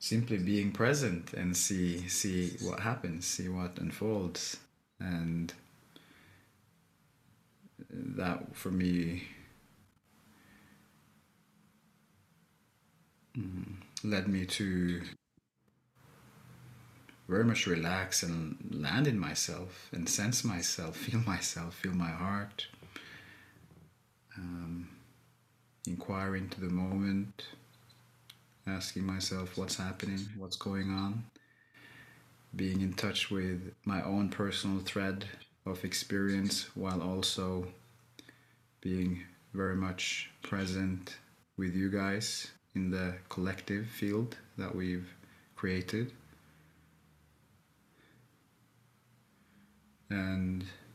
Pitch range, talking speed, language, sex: 90-100 Hz, 85 wpm, English, male